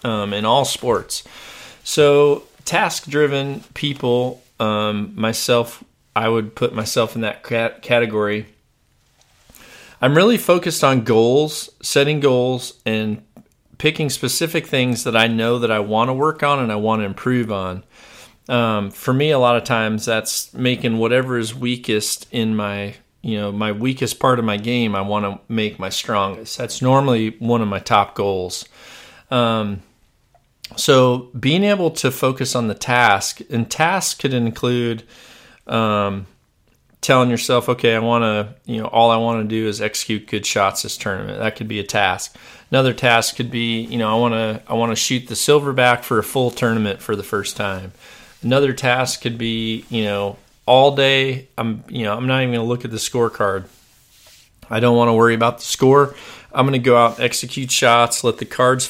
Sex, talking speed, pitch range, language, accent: male, 175 wpm, 110-130 Hz, English, American